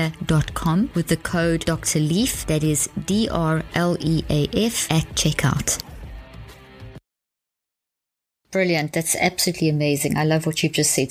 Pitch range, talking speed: 155-175 Hz, 115 wpm